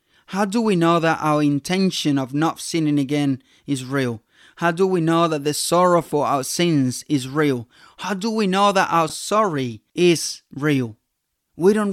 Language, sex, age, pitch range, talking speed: English, male, 20-39, 140-175 Hz, 180 wpm